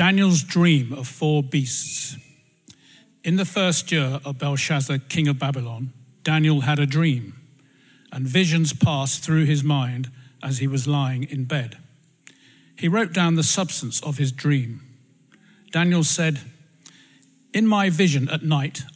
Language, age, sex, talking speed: English, 50-69, male, 140 wpm